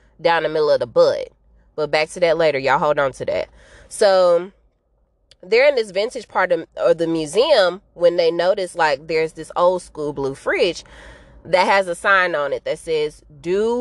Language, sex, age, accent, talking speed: English, female, 20-39, American, 200 wpm